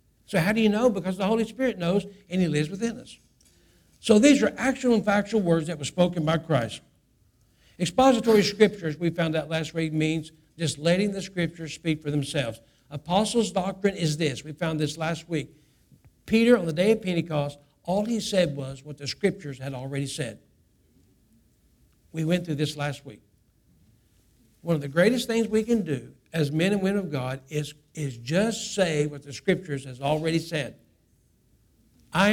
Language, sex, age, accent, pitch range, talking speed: English, male, 60-79, American, 145-200 Hz, 180 wpm